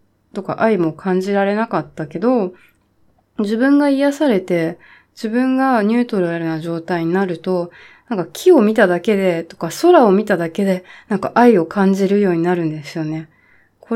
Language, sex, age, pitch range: Japanese, female, 20-39, 175-240 Hz